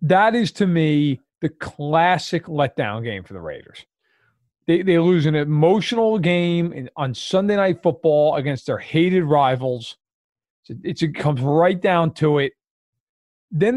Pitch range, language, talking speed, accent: 145-190 Hz, English, 150 wpm, American